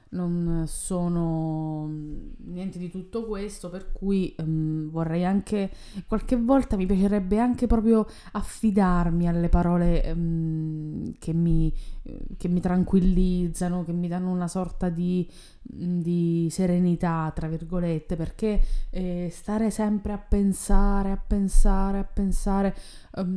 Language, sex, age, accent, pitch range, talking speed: Italian, female, 20-39, native, 165-200 Hz, 110 wpm